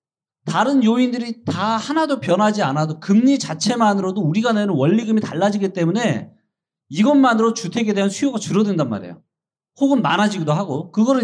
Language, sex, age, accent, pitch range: Korean, male, 40-59, native, 175-245 Hz